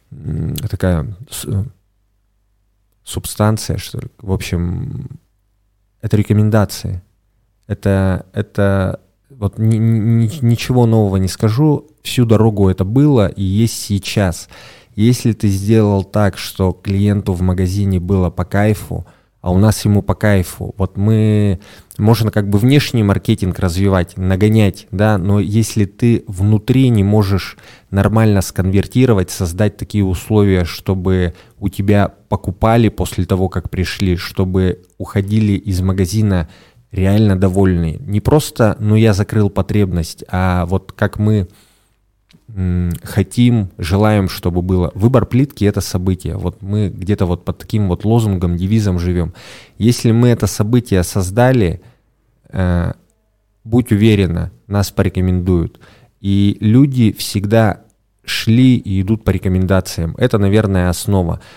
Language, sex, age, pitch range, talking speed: Russian, male, 20-39, 95-110 Hz, 120 wpm